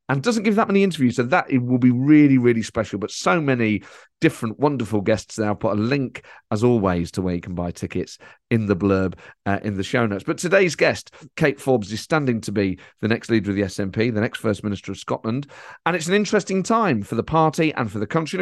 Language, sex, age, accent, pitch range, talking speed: English, male, 40-59, British, 110-145 Hz, 245 wpm